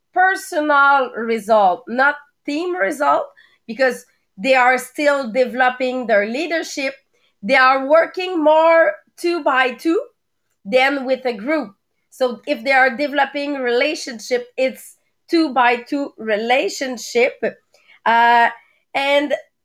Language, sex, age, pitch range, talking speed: English, female, 30-49, 240-295 Hz, 110 wpm